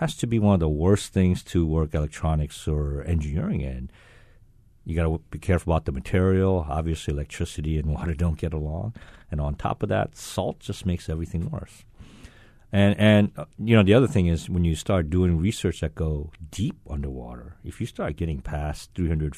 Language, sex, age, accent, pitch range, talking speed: English, male, 50-69, American, 80-100 Hz, 195 wpm